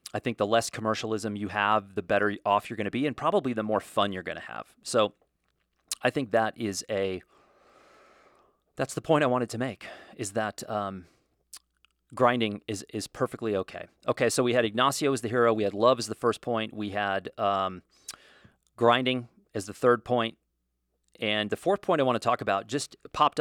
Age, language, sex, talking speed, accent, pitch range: 30-49, English, male, 200 wpm, American, 100-120 Hz